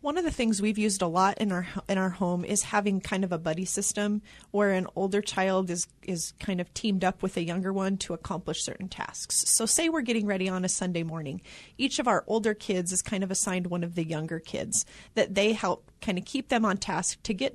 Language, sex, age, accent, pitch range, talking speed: English, female, 30-49, American, 185-240 Hz, 245 wpm